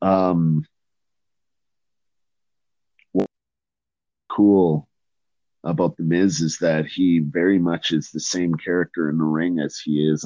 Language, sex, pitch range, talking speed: English, male, 75-90 Hz, 125 wpm